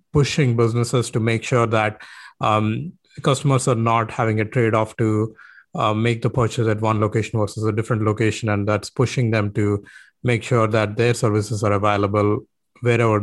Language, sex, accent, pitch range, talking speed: English, male, Indian, 105-120 Hz, 170 wpm